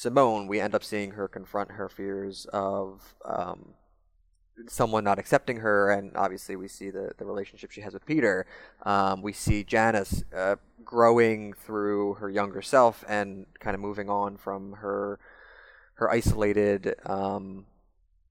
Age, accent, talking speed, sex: 20-39, American, 150 wpm, male